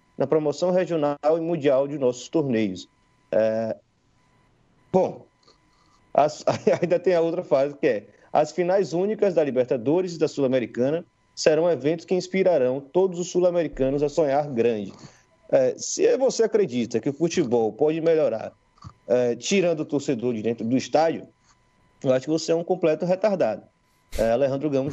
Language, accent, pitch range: Portuguese, Brazilian, 125-170 Hz